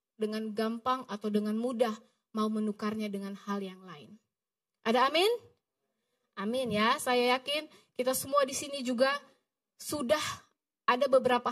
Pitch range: 225-315 Hz